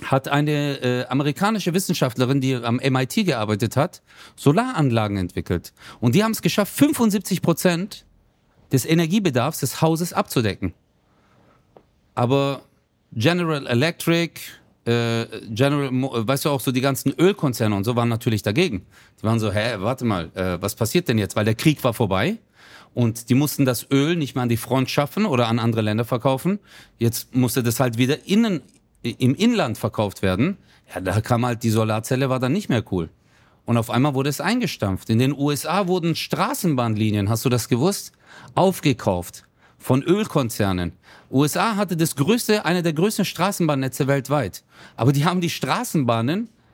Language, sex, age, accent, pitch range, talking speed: German, male, 40-59, German, 115-165 Hz, 160 wpm